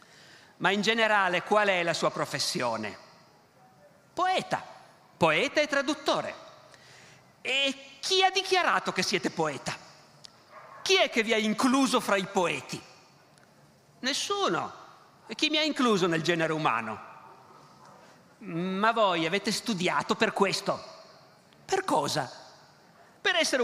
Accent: native